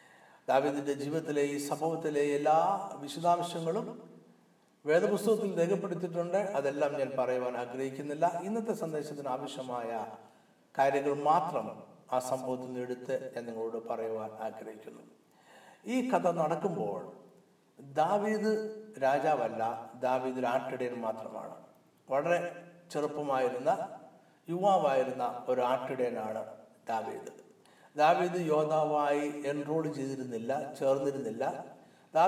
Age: 60-79